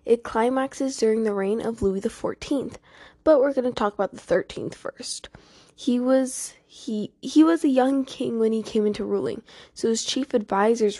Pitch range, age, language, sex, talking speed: 200-245 Hz, 10-29, English, female, 190 wpm